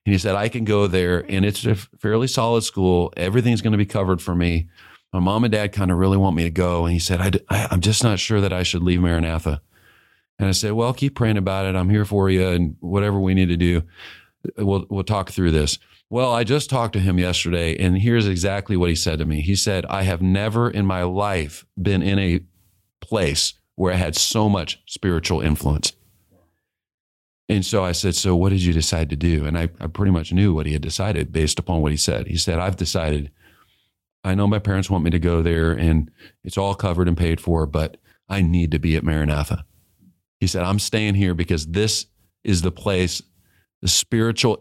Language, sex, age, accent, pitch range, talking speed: English, male, 40-59, American, 85-100 Hz, 225 wpm